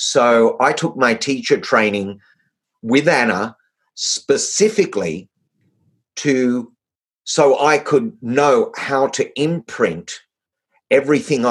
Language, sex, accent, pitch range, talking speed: English, male, Australian, 110-170 Hz, 95 wpm